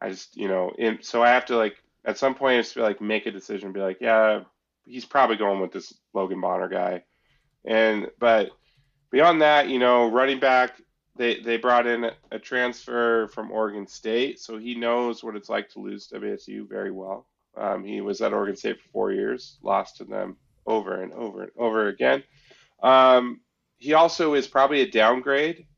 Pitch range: 105-130 Hz